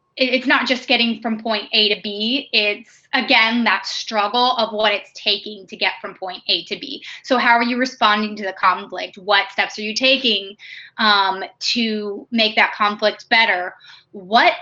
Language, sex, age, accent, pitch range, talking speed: English, female, 20-39, American, 195-240 Hz, 180 wpm